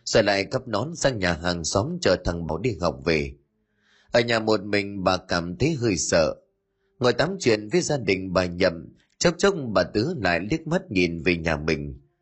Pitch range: 95-130 Hz